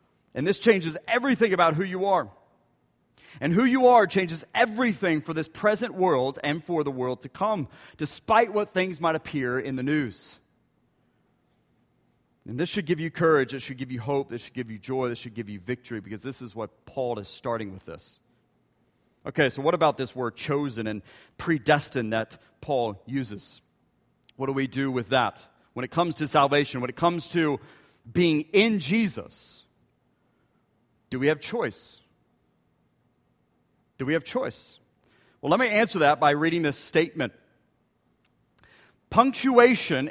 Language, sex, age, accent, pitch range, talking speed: English, male, 40-59, American, 130-195 Hz, 165 wpm